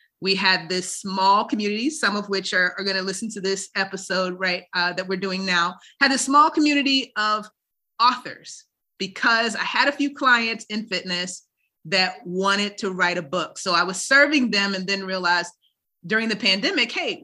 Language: English